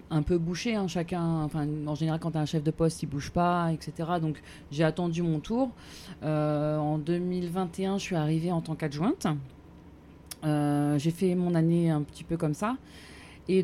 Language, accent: French, French